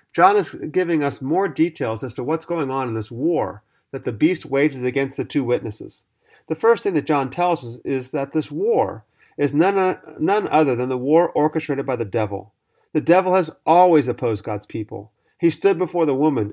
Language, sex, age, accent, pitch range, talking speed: English, male, 40-59, American, 115-160 Hz, 200 wpm